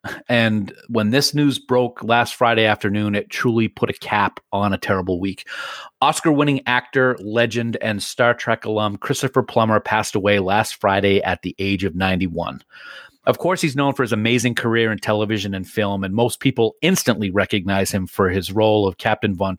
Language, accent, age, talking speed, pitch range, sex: English, American, 40-59, 180 wpm, 105-130 Hz, male